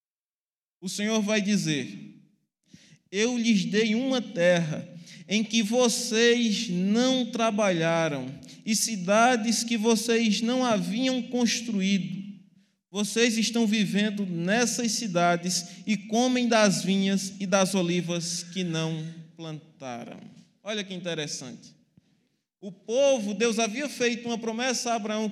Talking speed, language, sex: 115 wpm, Portuguese, male